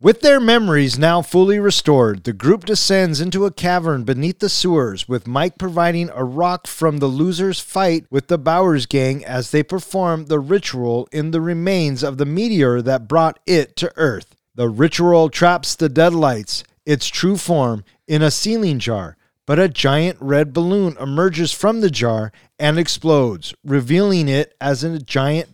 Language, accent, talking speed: English, American, 170 wpm